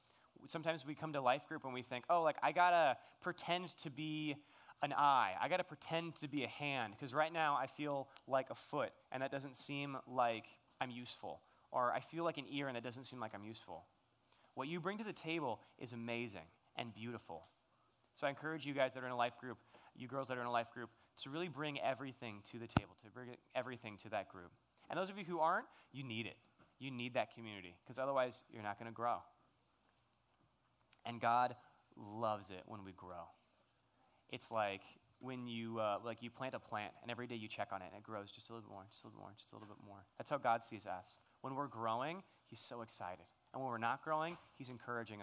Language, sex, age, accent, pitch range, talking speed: English, male, 20-39, American, 110-145 Hz, 235 wpm